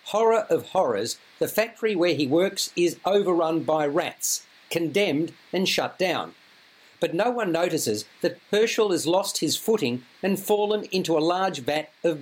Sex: male